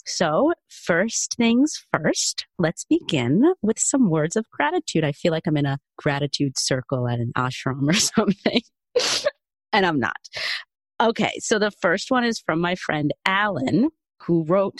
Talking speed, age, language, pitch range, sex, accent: 160 wpm, 40-59, English, 145-220 Hz, female, American